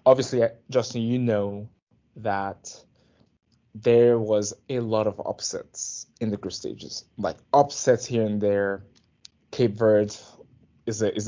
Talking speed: 135 wpm